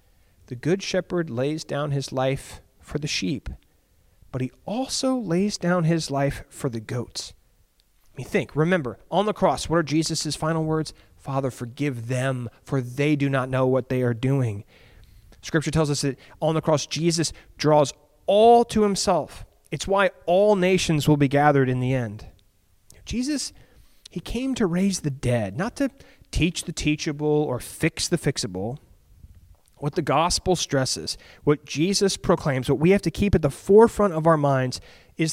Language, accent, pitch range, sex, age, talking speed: English, American, 125-180 Hz, male, 30-49, 170 wpm